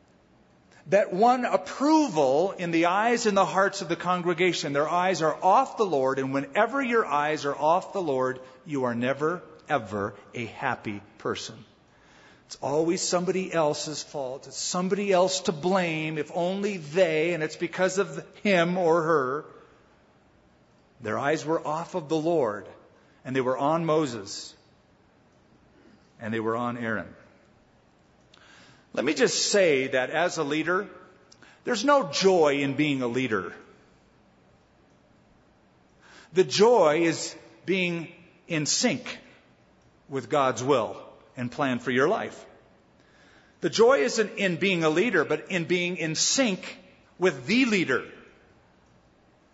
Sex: male